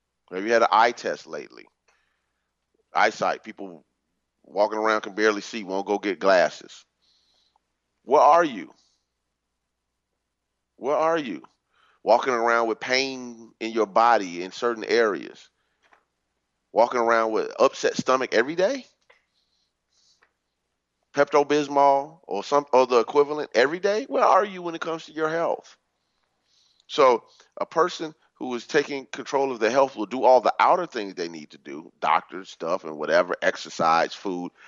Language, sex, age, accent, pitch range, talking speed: English, male, 30-49, American, 95-150 Hz, 145 wpm